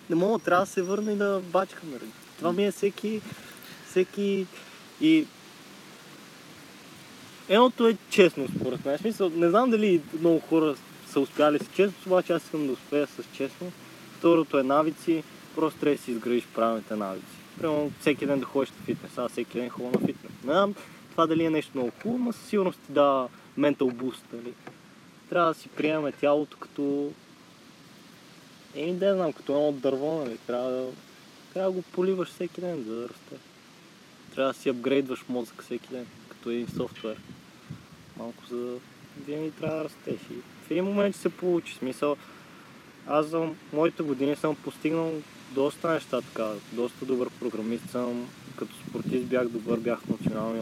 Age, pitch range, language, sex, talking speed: 20-39, 125-175 Hz, Bulgarian, male, 170 wpm